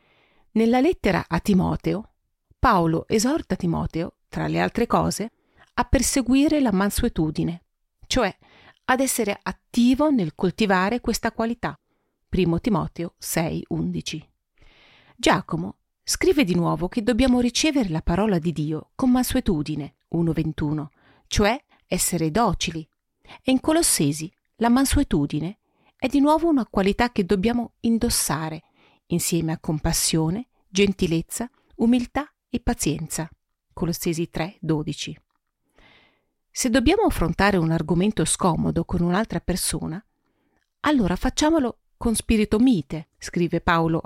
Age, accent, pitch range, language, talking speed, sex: 40-59, native, 165-240 Hz, Italian, 110 wpm, female